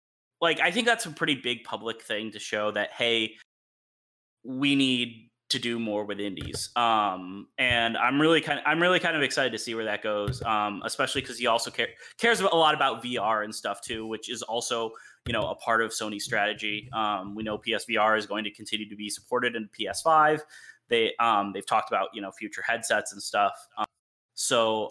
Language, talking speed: English, 205 wpm